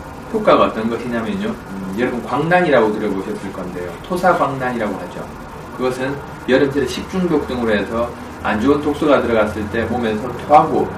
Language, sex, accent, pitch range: Korean, male, native, 105-145 Hz